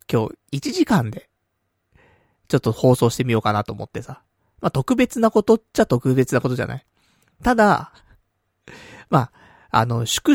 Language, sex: Japanese, male